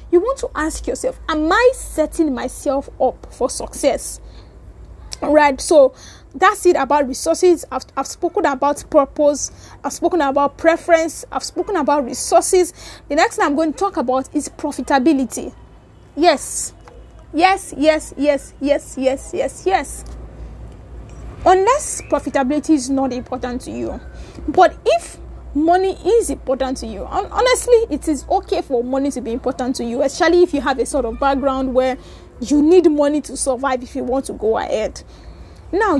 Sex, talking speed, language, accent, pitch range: female, 155 wpm, English, Nigerian, 265-340 Hz